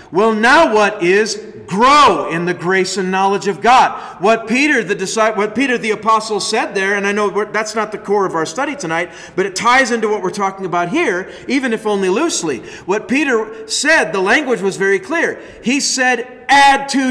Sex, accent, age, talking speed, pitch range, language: male, American, 40-59, 195 wpm, 150-235 Hz, English